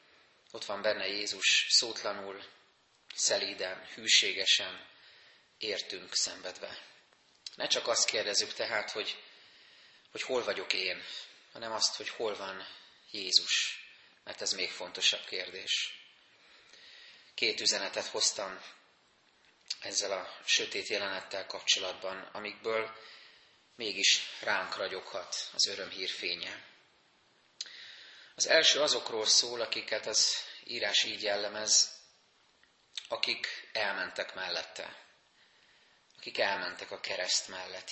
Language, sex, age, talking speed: Hungarian, male, 30-49, 100 wpm